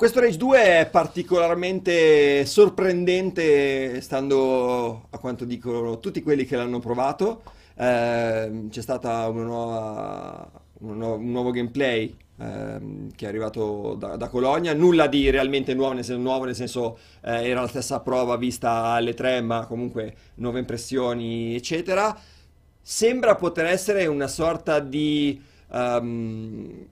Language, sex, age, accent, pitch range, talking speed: Italian, male, 30-49, native, 120-155 Hz, 125 wpm